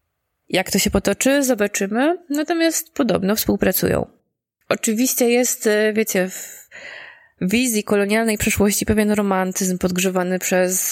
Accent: native